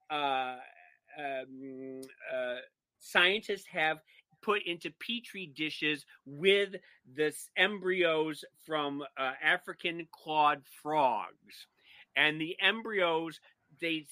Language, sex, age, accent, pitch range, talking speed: English, male, 40-59, American, 130-170 Hz, 90 wpm